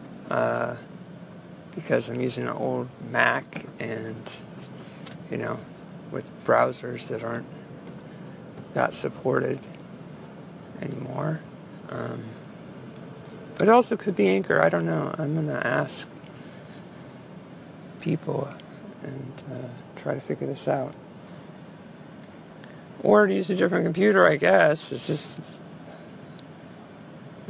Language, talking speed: English, 105 wpm